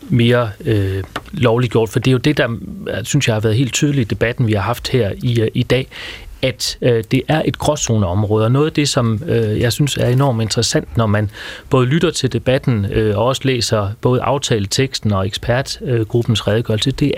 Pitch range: 110-135 Hz